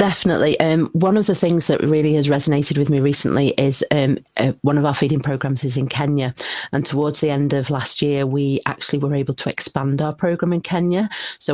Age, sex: 40-59, female